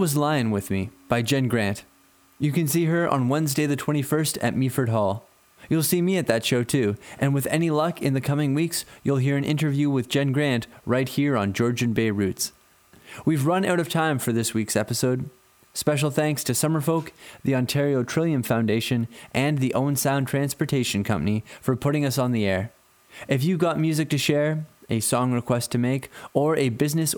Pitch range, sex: 120-150 Hz, male